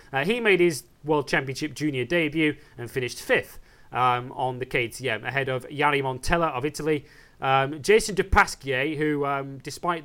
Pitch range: 130-155 Hz